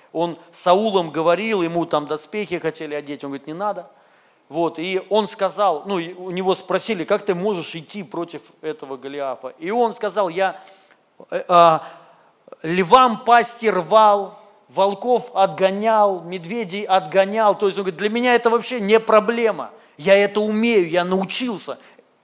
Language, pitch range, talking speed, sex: Russian, 190-235 Hz, 150 wpm, male